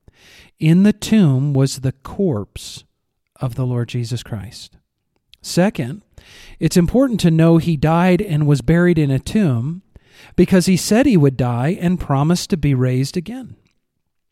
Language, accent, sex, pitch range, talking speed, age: English, American, male, 130-175 Hz, 150 wpm, 40-59